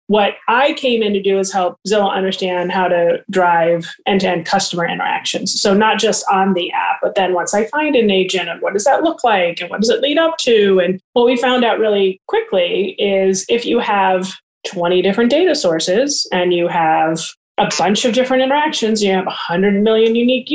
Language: English